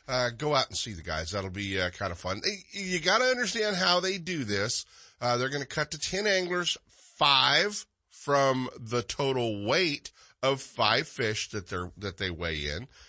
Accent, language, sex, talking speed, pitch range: American, English, male, 185 wpm, 105-145 Hz